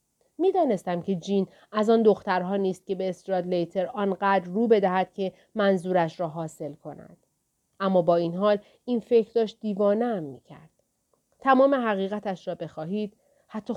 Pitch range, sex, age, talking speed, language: 180-225 Hz, female, 40-59, 155 wpm, Persian